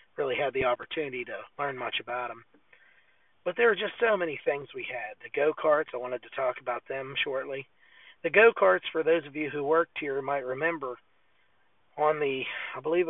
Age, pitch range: 40-59, 130-215 Hz